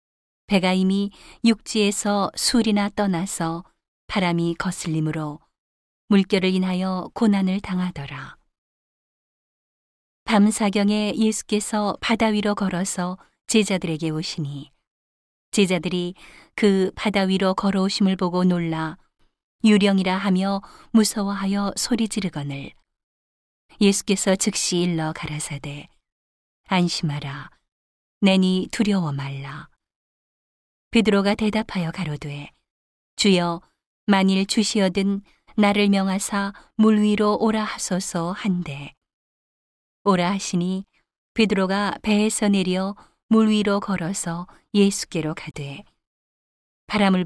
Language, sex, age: Korean, female, 40-59